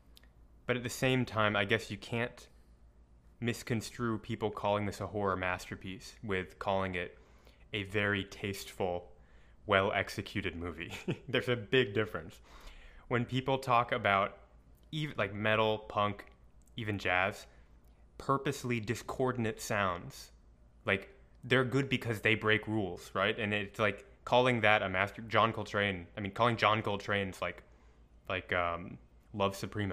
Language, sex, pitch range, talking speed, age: English, male, 90-115 Hz, 135 wpm, 20-39